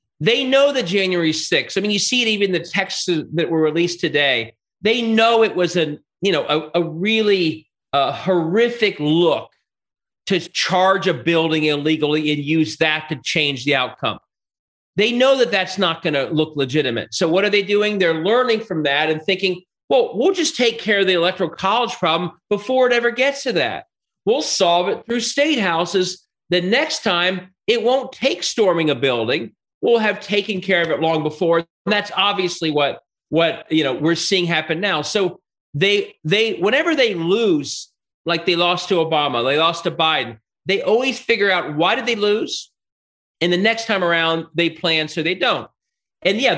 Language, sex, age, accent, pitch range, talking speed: English, male, 40-59, American, 160-205 Hz, 190 wpm